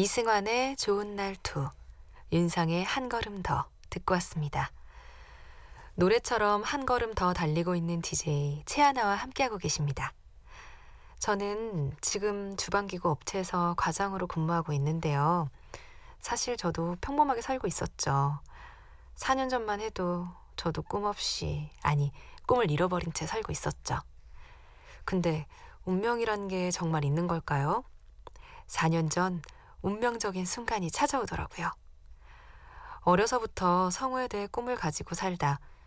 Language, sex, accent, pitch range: Korean, female, native, 155-220 Hz